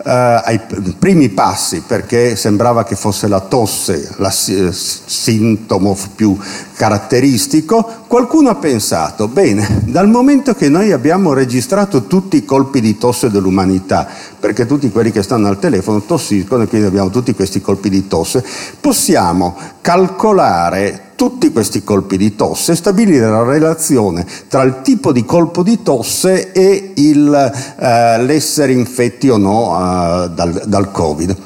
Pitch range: 100-155 Hz